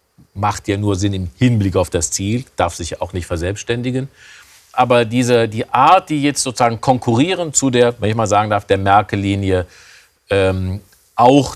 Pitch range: 110-145 Hz